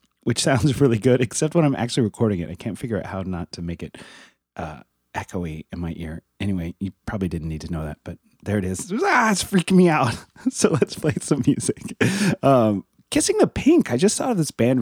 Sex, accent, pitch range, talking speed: male, American, 90-125 Hz, 225 wpm